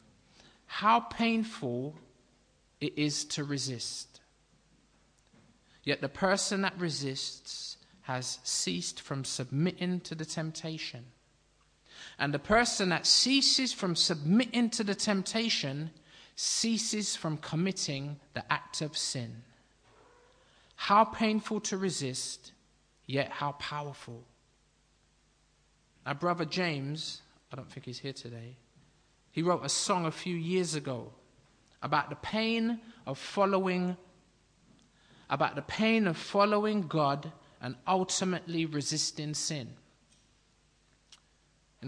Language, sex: English, male